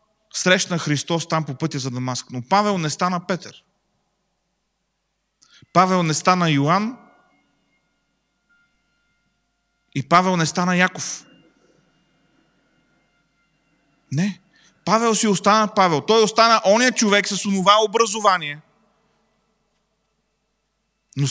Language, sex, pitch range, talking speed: Bulgarian, male, 180-220 Hz, 95 wpm